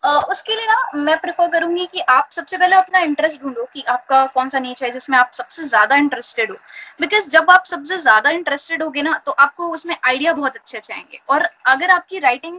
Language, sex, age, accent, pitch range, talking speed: Hindi, female, 20-39, native, 275-355 Hz, 215 wpm